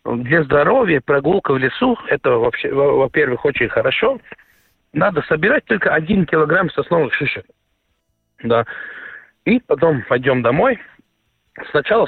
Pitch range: 125-200 Hz